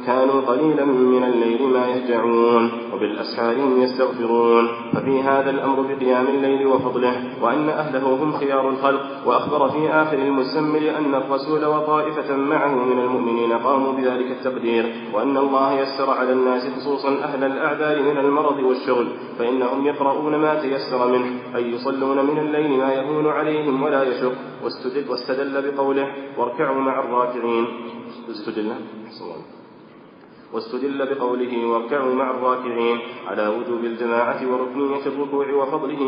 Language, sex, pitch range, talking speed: Arabic, male, 125-140 Hz, 125 wpm